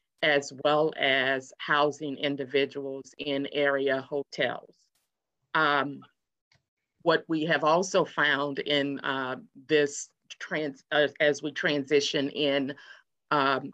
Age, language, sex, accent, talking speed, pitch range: 50-69, English, female, American, 105 wpm, 135-150 Hz